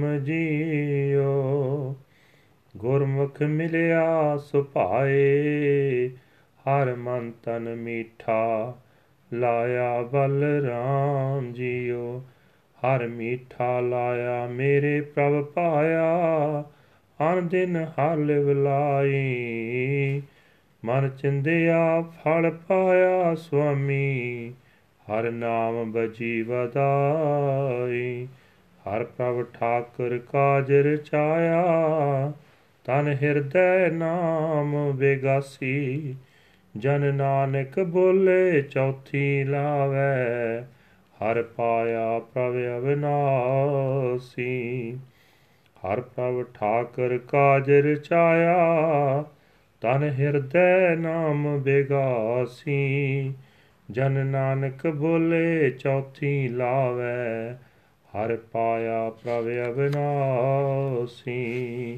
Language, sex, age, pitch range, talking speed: Punjabi, male, 30-49, 120-145 Hz, 65 wpm